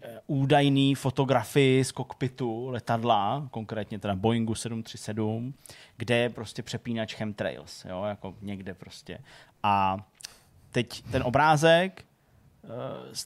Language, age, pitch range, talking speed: Czech, 20-39, 110-130 Hz, 105 wpm